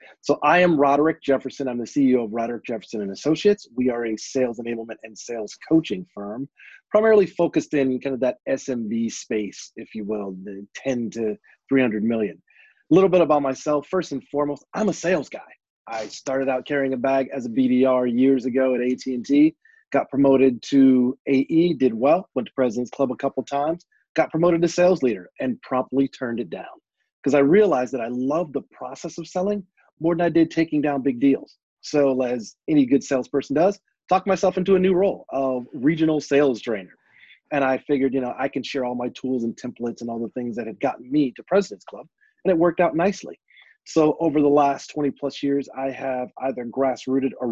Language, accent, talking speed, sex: English, American, 205 wpm, male